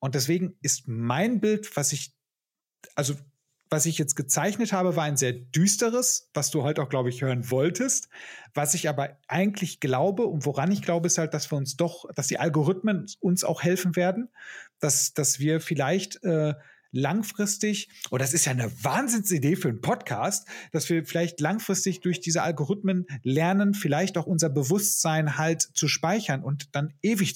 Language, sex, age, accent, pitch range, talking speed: German, male, 40-59, German, 145-190 Hz, 180 wpm